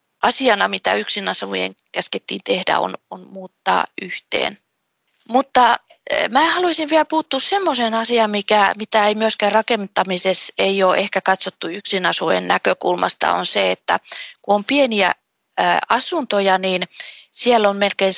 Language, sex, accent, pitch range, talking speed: Finnish, female, native, 195-245 Hz, 130 wpm